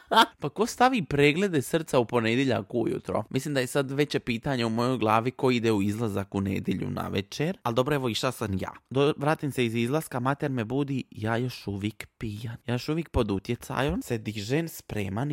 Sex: male